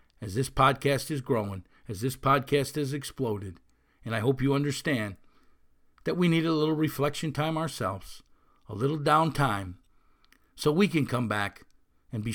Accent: American